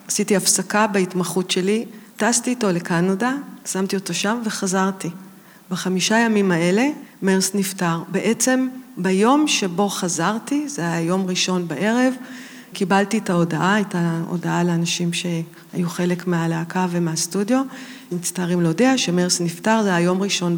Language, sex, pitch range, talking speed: Hebrew, female, 175-215 Hz, 125 wpm